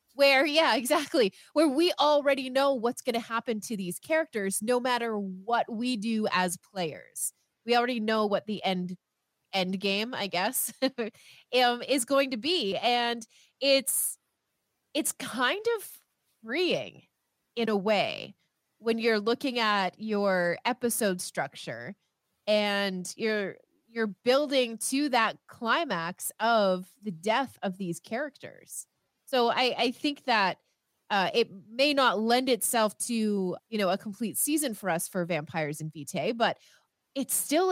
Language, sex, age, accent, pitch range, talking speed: English, female, 20-39, American, 190-245 Hz, 145 wpm